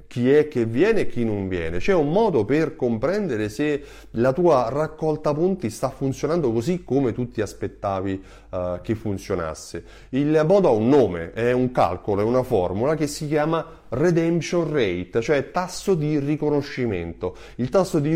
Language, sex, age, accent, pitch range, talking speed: Italian, male, 30-49, native, 115-160 Hz, 170 wpm